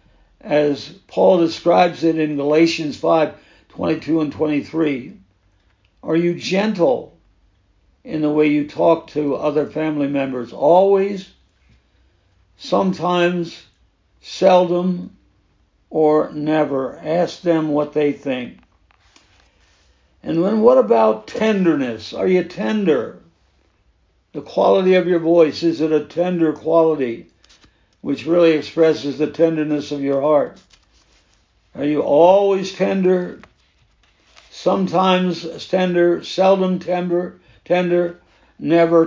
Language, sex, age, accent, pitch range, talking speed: English, male, 60-79, American, 135-175 Hz, 105 wpm